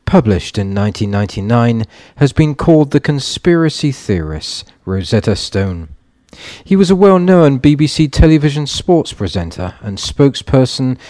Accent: British